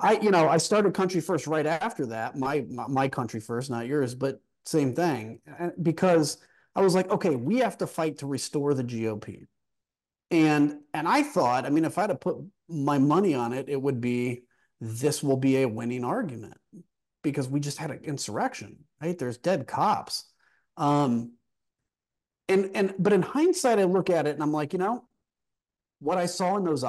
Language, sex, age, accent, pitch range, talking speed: English, male, 30-49, American, 120-165 Hz, 190 wpm